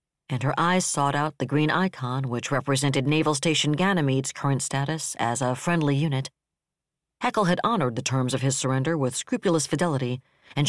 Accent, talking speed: American, 175 wpm